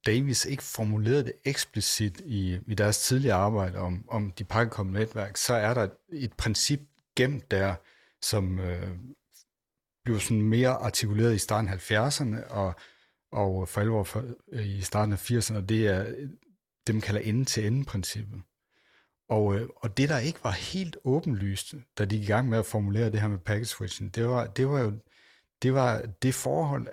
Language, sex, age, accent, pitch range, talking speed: Danish, male, 60-79, native, 100-130 Hz, 180 wpm